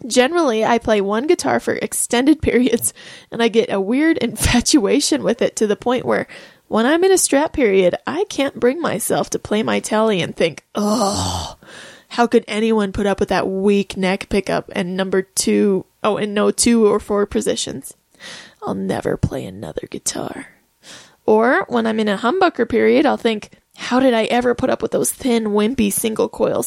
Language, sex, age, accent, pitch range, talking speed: English, female, 20-39, American, 210-260 Hz, 185 wpm